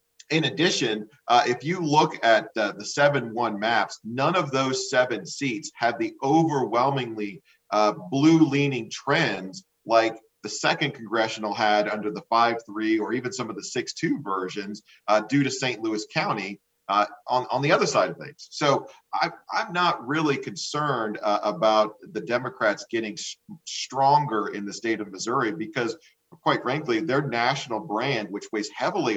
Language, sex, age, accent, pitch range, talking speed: English, male, 40-59, American, 105-150 Hz, 155 wpm